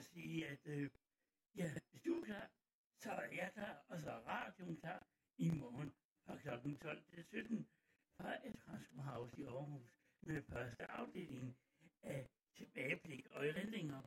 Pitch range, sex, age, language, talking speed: 135-205 Hz, male, 60-79, Italian, 150 wpm